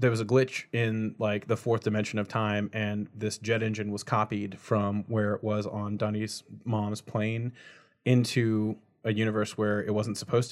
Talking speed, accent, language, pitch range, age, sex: 185 wpm, American, English, 105-120 Hz, 30-49, male